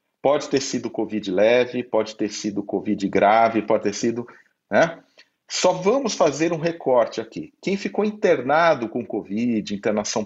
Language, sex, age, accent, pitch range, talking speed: Portuguese, male, 40-59, Brazilian, 110-155 Hz, 150 wpm